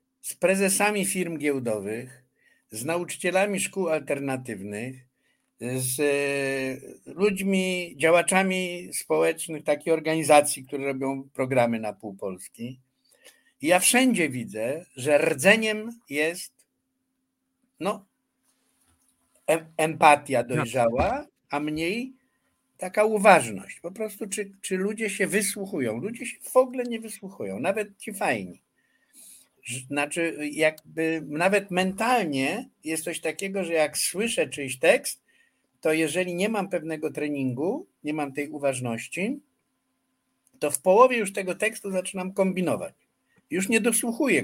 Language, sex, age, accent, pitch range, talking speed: Polish, male, 60-79, native, 145-205 Hz, 115 wpm